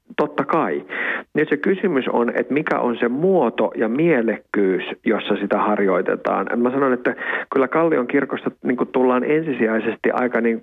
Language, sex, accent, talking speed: Finnish, male, native, 155 wpm